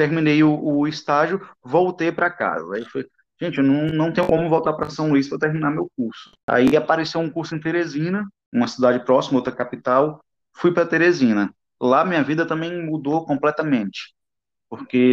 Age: 20-39